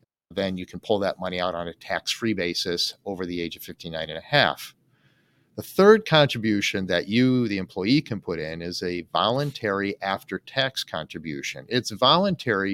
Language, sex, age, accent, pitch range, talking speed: English, male, 40-59, American, 100-135 Hz, 170 wpm